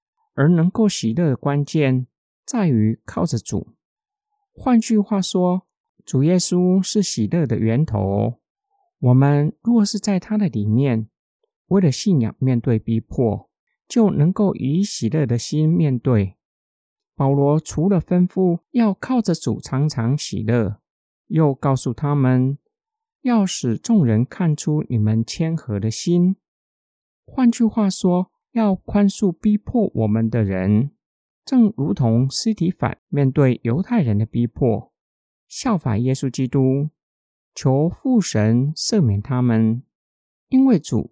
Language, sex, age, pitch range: Chinese, male, 50-69, 120-195 Hz